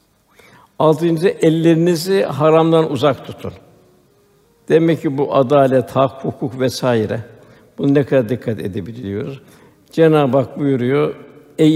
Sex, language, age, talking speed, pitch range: male, Turkish, 60-79, 105 wpm, 135-160 Hz